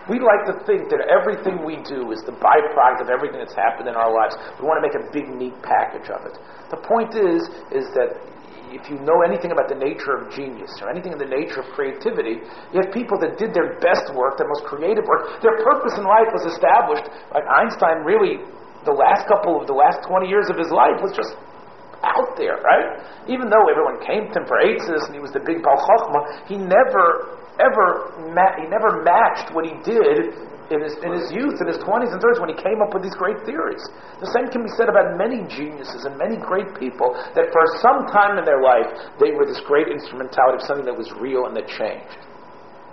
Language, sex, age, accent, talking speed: English, male, 40-59, American, 225 wpm